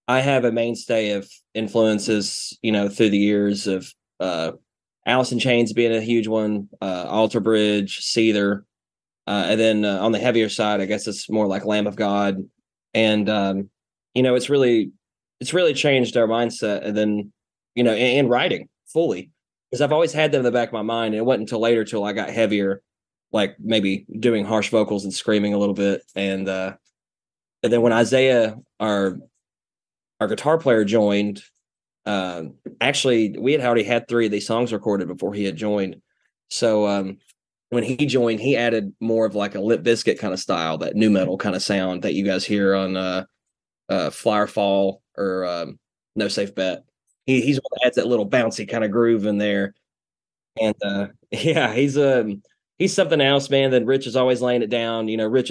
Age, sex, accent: 20-39, male, American